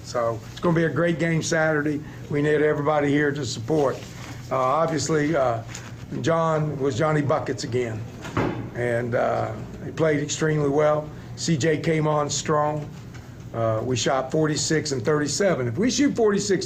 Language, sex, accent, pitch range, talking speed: English, male, American, 140-170 Hz, 155 wpm